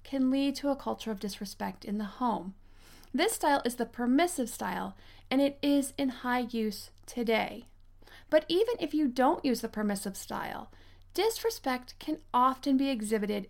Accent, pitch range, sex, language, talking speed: American, 215-280 Hz, female, English, 165 wpm